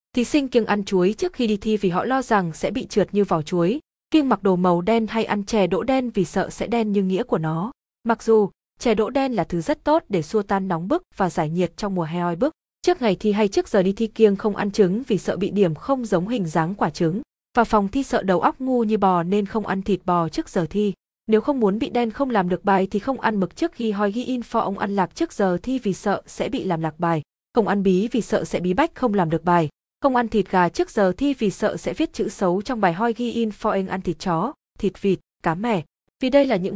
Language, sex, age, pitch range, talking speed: Vietnamese, female, 20-39, 185-230 Hz, 280 wpm